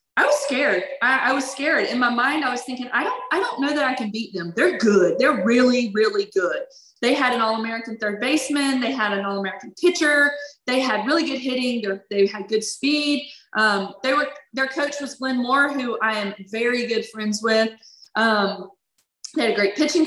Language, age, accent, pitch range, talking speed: English, 20-39, American, 215-275 Hz, 210 wpm